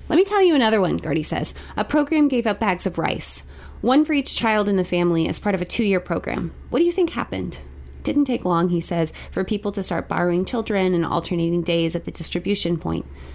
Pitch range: 170-220 Hz